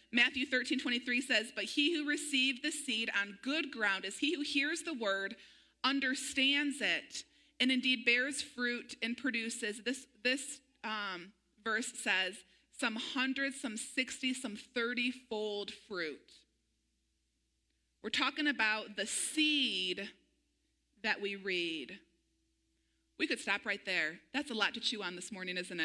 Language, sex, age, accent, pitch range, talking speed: English, female, 30-49, American, 205-270 Hz, 140 wpm